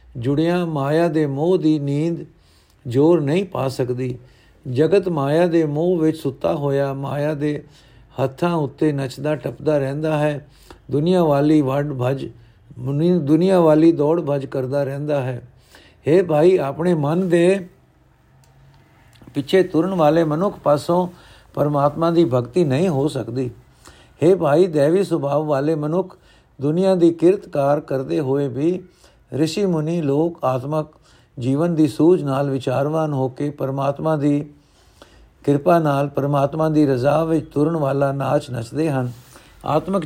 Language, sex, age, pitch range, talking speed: Punjabi, male, 60-79, 135-165 Hz, 130 wpm